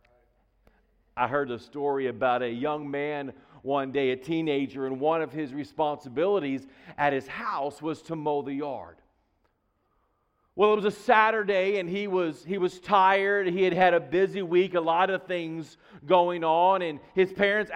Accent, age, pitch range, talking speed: American, 40-59, 150-220 Hz, 170 wpm